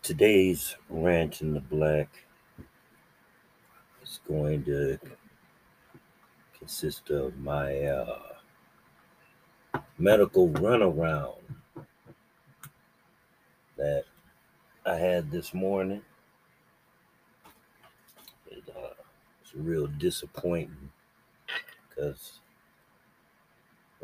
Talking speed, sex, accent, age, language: 60 wpm, male, American, 60-79, English